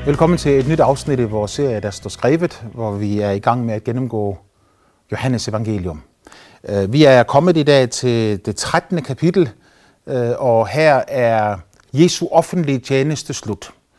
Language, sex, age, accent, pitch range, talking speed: Danish, male, 30-49, native, 115-145 Hz, 165 wpm